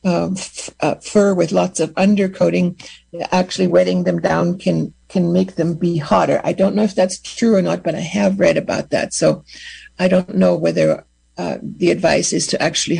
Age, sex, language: 60-79, female, English